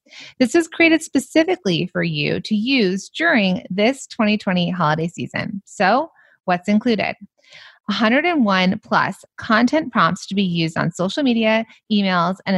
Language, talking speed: English, 135 wpm